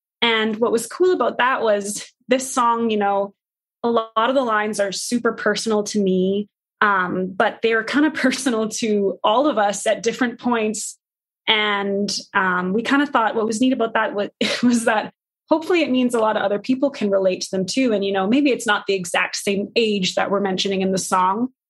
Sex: female